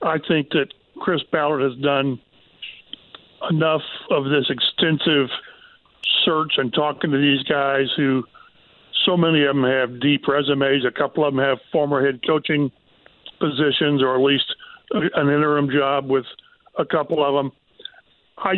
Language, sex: English, male